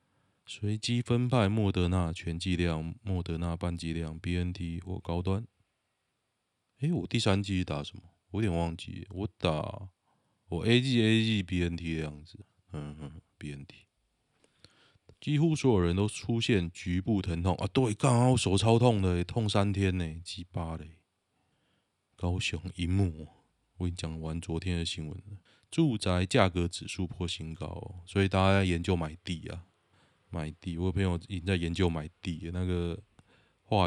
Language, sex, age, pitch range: Chinese, male, 20-39, 85-105 Hz